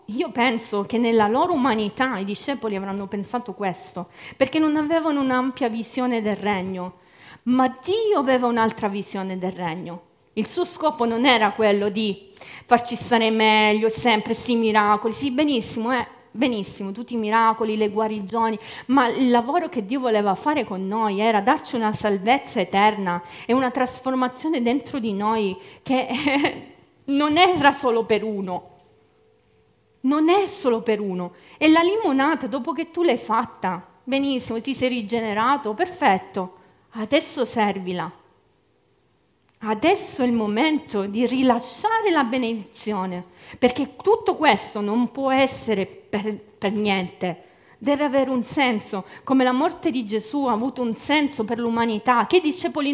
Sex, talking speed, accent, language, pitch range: female, 145 wpm, native, Italian, 210-275 Hz